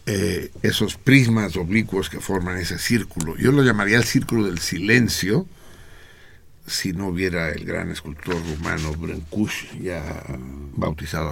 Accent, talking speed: Mexican, 125 wpm